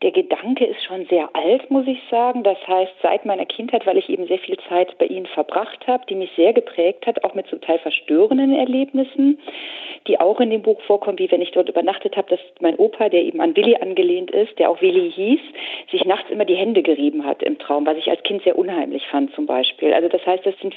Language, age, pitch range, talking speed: German, 40-59, 180-270 Hz, 240 wpm